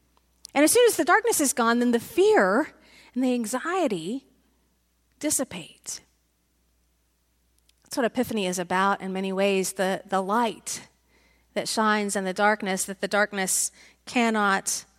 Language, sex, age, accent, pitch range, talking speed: English, female, 40-59, American, 190-240 Hz, 140 wpm